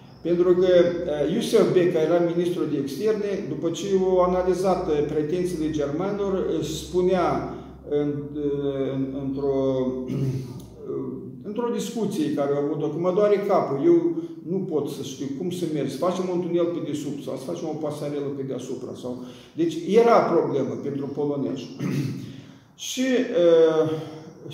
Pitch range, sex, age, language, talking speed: 135-175 Hz, male, 50-69, Romanian, 130 wpm